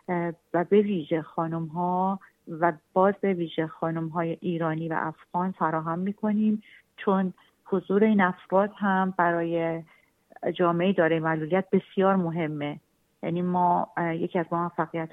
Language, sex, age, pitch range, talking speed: Persian, female, 40-59, 165-190 Hz, 130 wpm